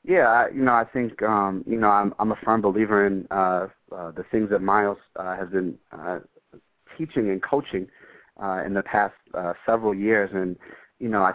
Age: 30-49